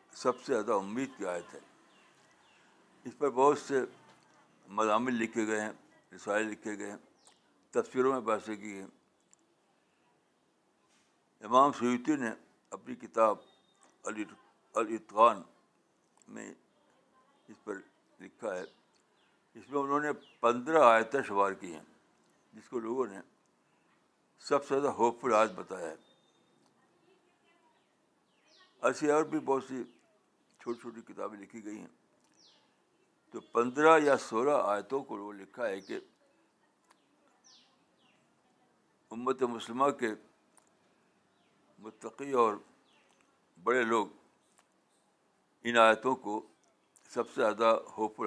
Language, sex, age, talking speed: Urdu, male, 60-79, 115 wpm